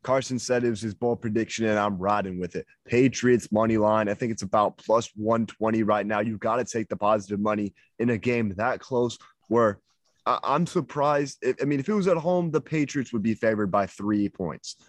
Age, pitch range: 20-39, 100-130 Hz